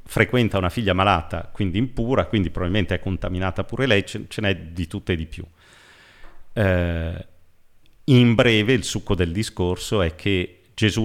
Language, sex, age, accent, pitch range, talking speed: Italian, male, 40-59, native, 85-110 Hz, 165 wpm